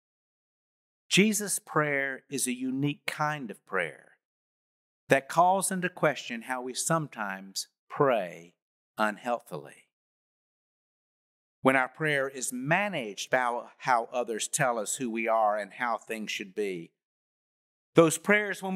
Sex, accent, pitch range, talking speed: male, American, 130-175 Hz, 120 wpm